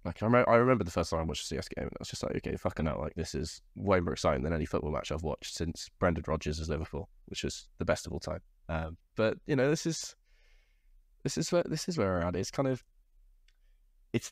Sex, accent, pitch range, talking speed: male, British, 80-105 Hz, 260 wpm